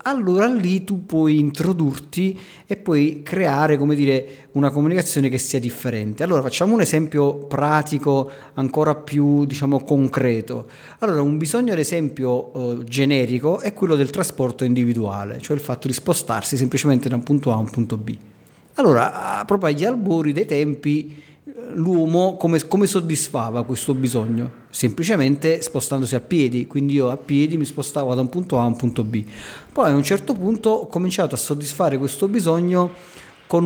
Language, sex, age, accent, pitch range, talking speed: Italian, male, 40-59, native, 130-175 Hz, 165 wpm